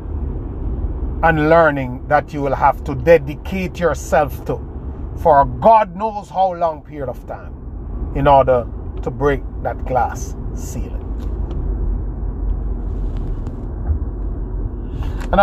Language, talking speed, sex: English, 105 wpm, male